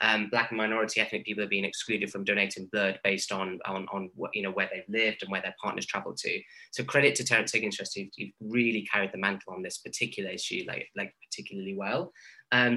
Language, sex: English, male